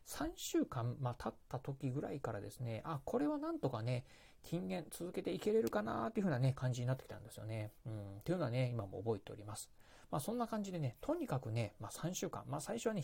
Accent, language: native, Japanese